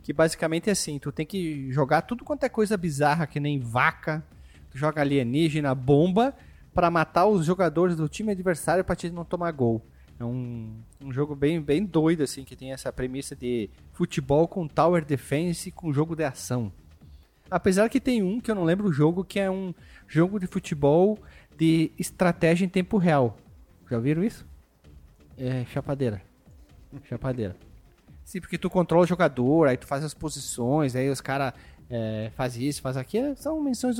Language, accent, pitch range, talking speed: Portuguese, Brazilian, 130-180 Hz, 180 wpm